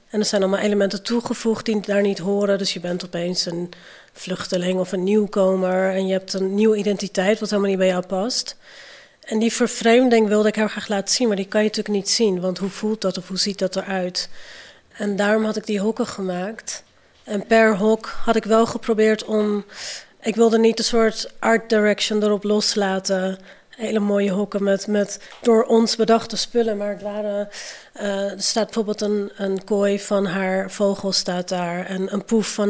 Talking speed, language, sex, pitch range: 195 wpm, Dutch, female, 195-220 Hz